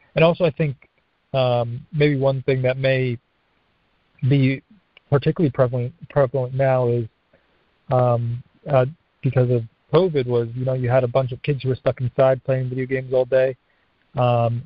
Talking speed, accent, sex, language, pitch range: 165 wpm, American, male, English, 120-135 Hz